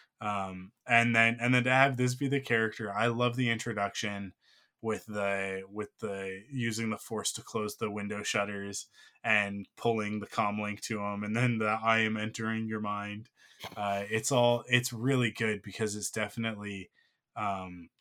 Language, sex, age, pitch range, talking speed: English, male, 20-39, 100-115 Hz, 175 wpm